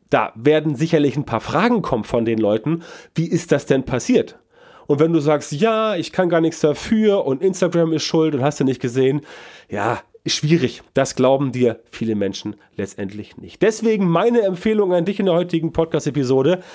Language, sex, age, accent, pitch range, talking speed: German, male, 30-49, German, 130-185 Hz, 185 wpm